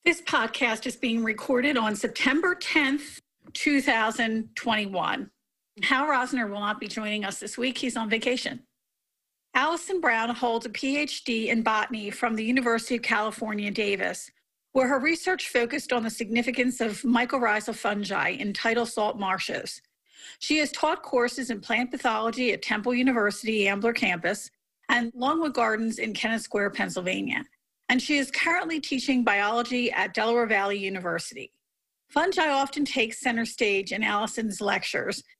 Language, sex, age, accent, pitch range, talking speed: English, female, 40-59, American, 215-260 Hz, 145 wpm